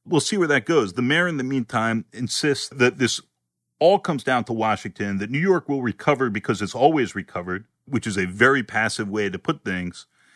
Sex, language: male, English